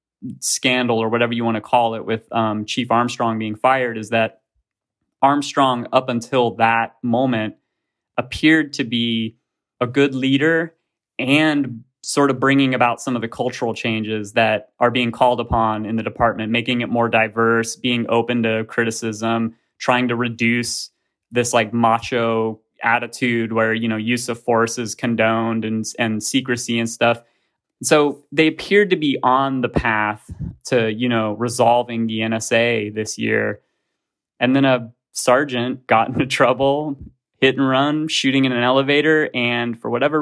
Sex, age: male, 20-39